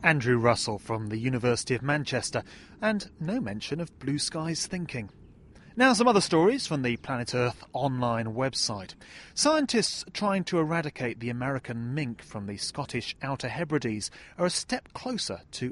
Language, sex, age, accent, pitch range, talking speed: English, male, 30-49, British, 120-180 Hz, 155 wpm